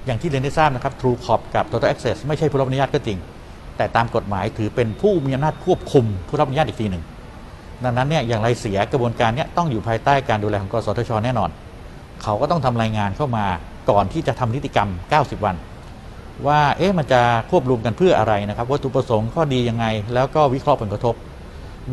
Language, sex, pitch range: Thai, male, 110-140 Hz